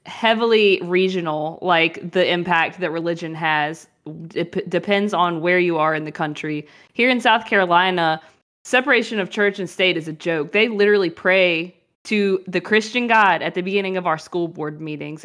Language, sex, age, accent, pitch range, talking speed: English, female, 20-39, American, 175-215 Hz, 175 wpm